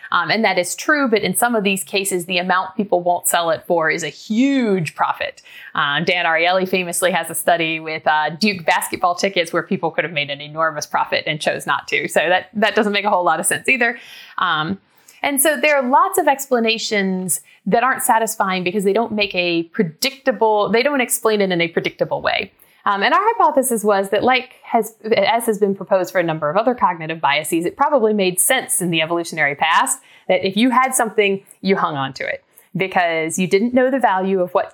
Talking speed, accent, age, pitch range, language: 220 wpm, American, 30-49, 170-225 Hz, English